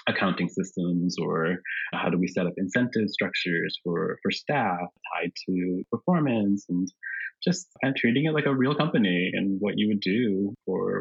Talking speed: 175 wpm